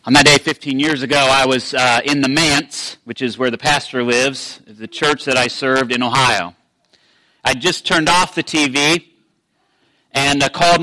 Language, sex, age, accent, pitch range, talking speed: English, male, 40-59, American, 130-170 Hz, 190 wpm